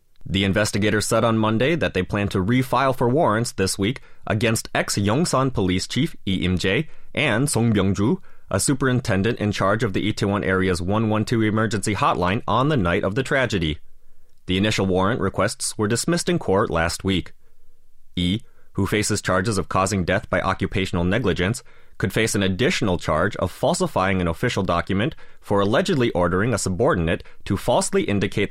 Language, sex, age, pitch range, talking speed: English, male, 30-49, 95-120 Hz, 170 wpm